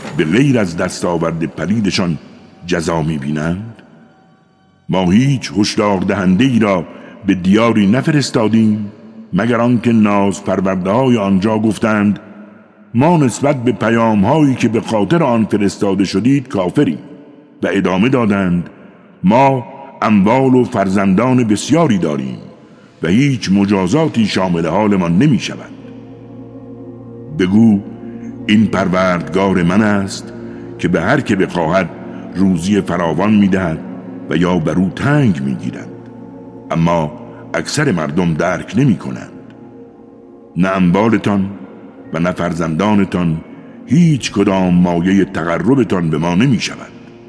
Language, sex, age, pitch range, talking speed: Persian, male, 60-79, 90-120 Hz, 115 wpm